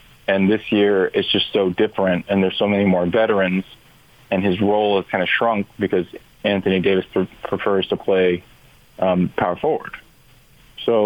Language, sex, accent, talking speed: English, male, American, 170 wpm